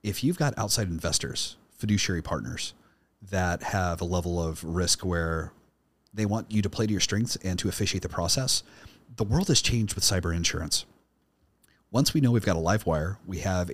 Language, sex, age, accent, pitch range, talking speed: English, male, 30-49, American, 85-105 Hz, 190 wpm